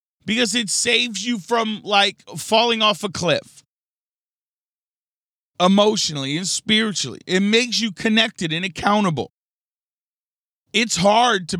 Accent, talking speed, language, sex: American, 115 wpm, English, male